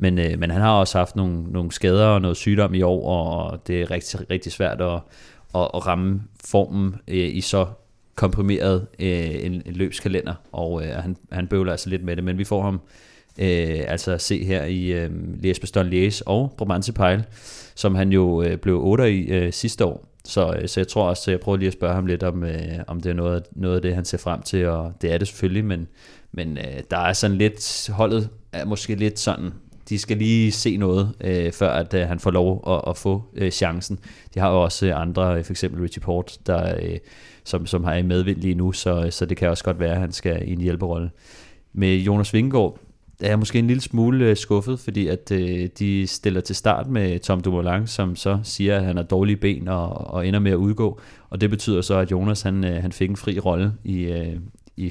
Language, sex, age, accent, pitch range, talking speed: Danish, male, 30-49, native, 90-100 Hz, 230 wpm